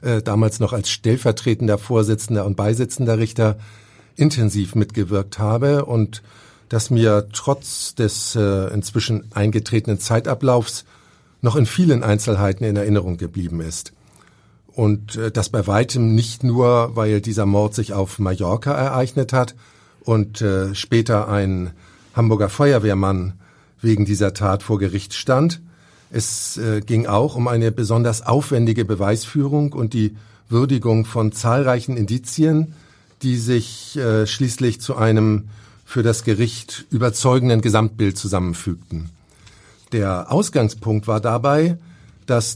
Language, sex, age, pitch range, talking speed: German, male, 50-69, 105-125 Hz, 120 wpm